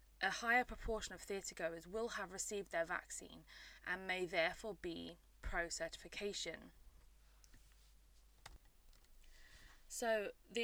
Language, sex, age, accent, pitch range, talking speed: English, female, 20-39, British, 165-210 Hz, 95 wpm